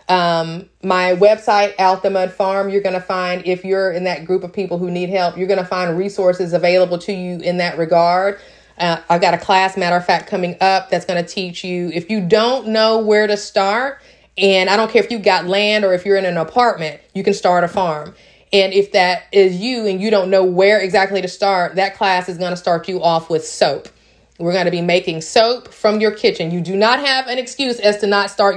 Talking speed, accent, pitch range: 235 wpm, American, 180-205 Hz